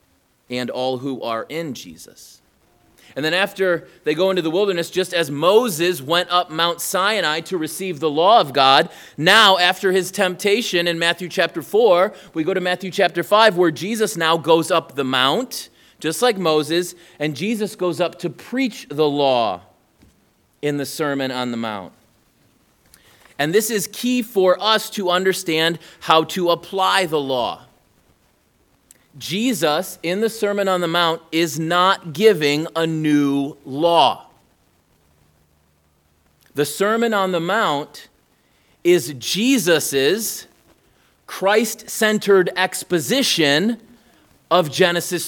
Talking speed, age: 135 wpm, 30-49